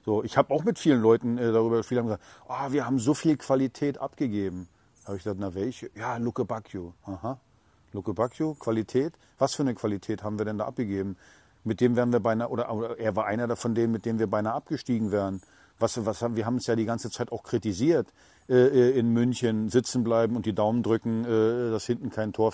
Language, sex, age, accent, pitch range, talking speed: German, male, 50-69, German, 110-135 Hz, 220 wpm